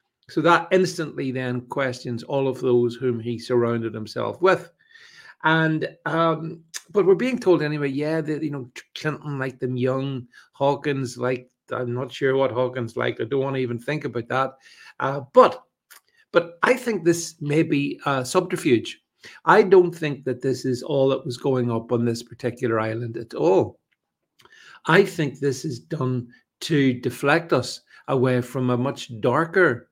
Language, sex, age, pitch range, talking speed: English, male, 50-69, 125-170 Hz, 170 wpm